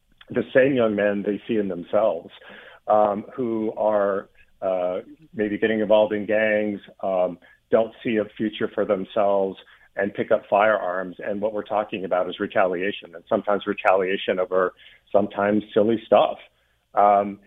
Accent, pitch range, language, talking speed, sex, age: American, 95-110 Hz, English, 150 wpm, male, 40-59